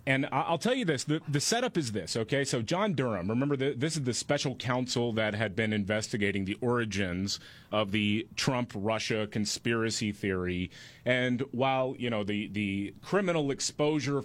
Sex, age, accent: male, 30-49, American